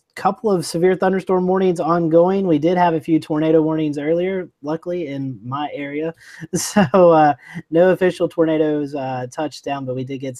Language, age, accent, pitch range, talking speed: English, 30-49, American, 130-175 Hz, 175 wpm